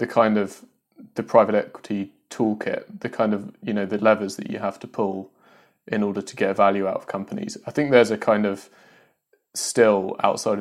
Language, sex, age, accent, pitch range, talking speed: English, male, 20-39, British, 95-115 Hz, 200 wpm